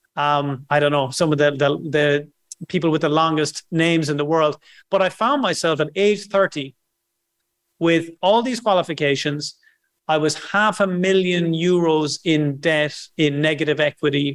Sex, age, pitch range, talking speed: male, 30-49, 150-185 Hz, 165 wpm